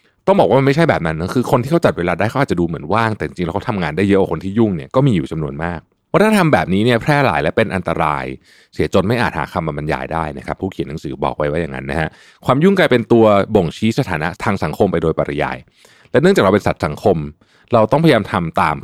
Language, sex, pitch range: Thai, male, 85-125 Hz